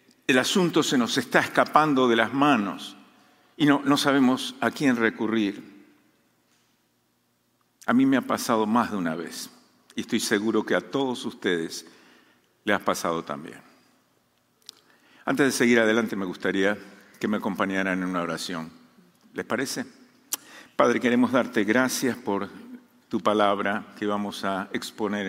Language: Spanish